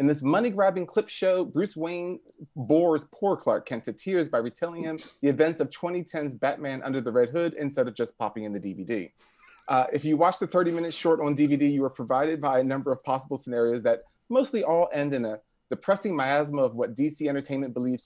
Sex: male